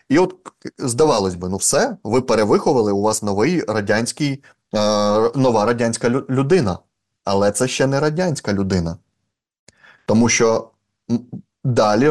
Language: Ukrainian